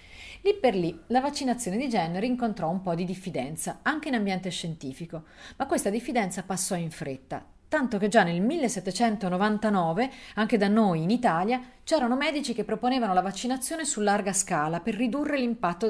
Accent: native